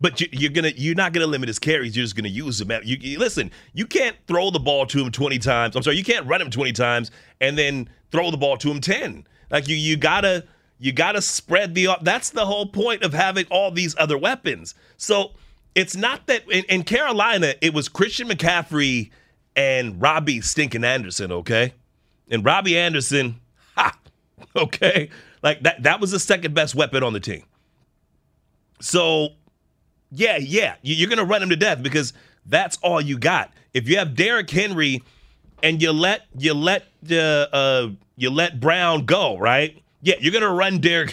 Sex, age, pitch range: male, 30-49, 135-180 Hz